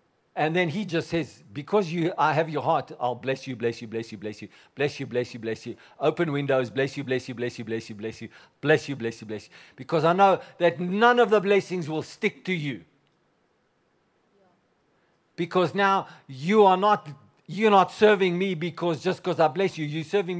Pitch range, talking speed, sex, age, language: 130-175 Hz, 205 wpm, male, 60-79, English